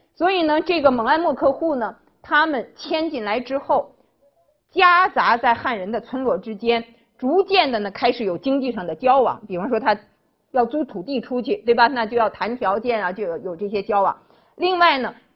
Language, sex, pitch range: Chinese, female, 210-300 Hz